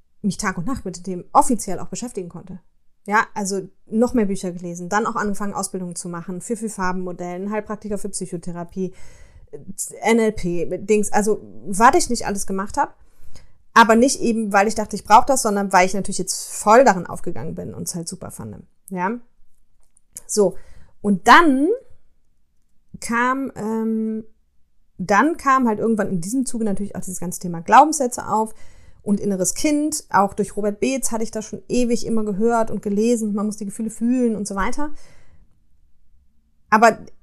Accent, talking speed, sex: German, 170 wpm, female